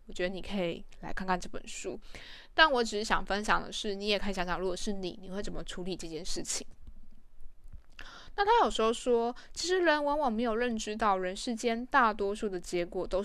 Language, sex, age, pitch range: Chinese, female, 10-29, 190-255 Hz